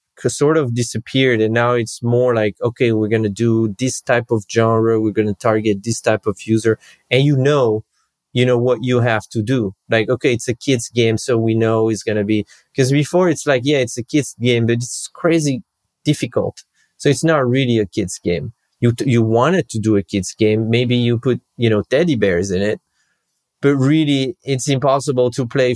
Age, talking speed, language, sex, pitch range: 30-49, 210 wpm, English, male, 110-130 Hz